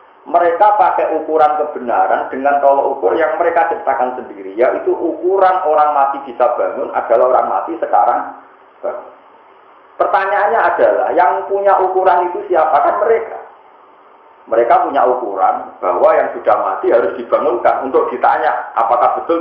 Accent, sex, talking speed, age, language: native, male, 135 wpm, 40-59, Indonesian